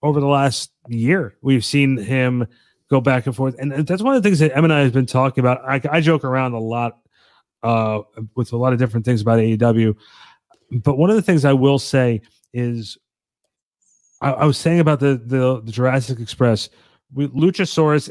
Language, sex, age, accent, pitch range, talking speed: English, male, 30-49, American, 120-150 Hz, 195 wpm